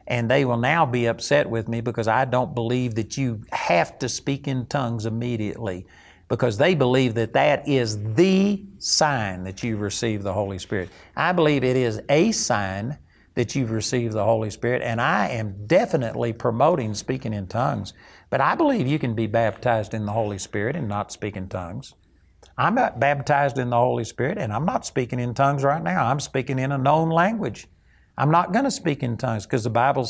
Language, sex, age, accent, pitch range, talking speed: English, male, 60-79, American, 115-145 Hz, 200 wpm